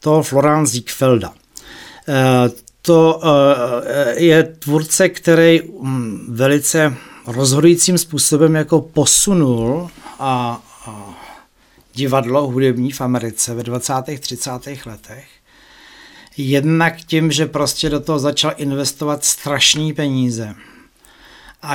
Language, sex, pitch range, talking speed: Czech, male, 125-160 Hz, 90 wpm